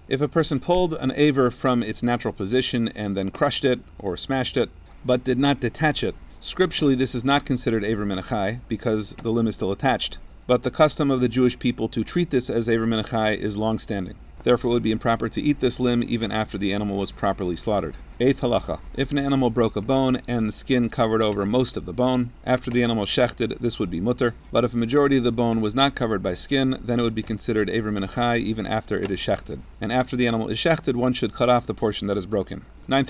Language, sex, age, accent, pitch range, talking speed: English, male, 40-59, American, 110-125 Hz, 240 wpm